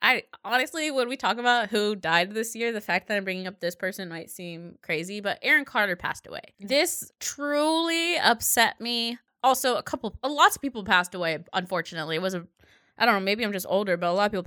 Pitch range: 175-235 Hz